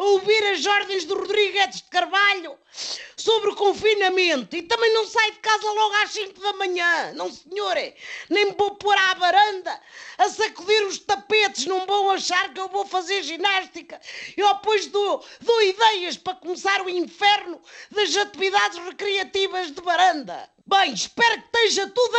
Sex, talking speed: female, 165 wpm